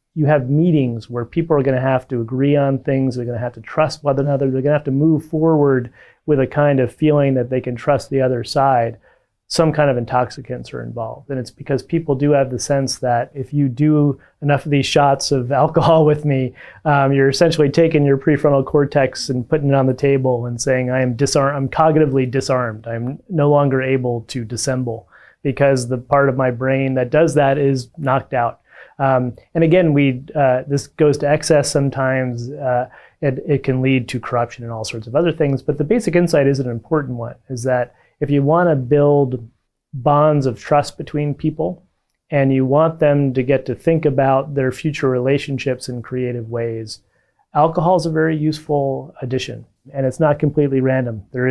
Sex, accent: male, American